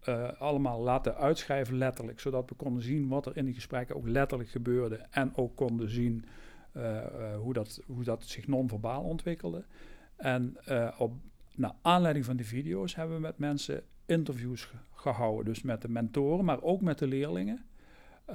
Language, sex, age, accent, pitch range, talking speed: Dutch, male, 50-69, Dutch, 125-150 Hz, 175 wpm